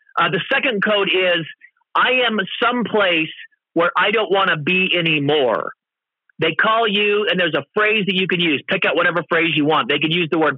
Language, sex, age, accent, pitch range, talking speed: English, male, 40-59, American, 170-215 Hz, 210 wpm